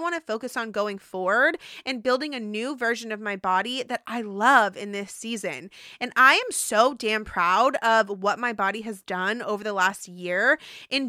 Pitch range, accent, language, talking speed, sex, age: 215-270 Hz, American, English, 200 wpm, female, 20-39